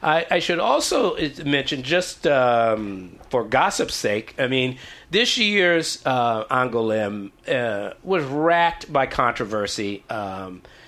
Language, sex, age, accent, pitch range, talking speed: English, male, 50-69, American, 125-170 Hz, 120 wpm